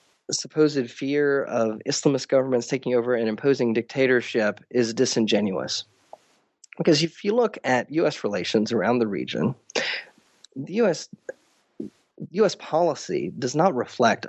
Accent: American